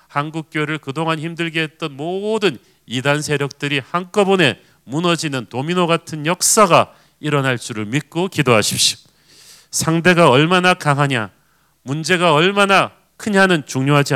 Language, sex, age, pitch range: Korean, male, 40-59, 120-150 Hz